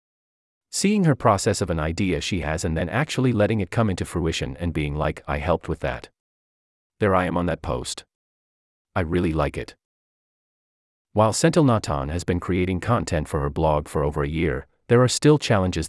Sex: male